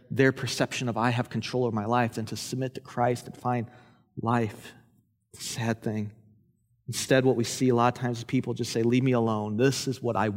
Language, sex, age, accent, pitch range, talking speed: English, male, 30-49, American, 115-150 Hz, 220 wpm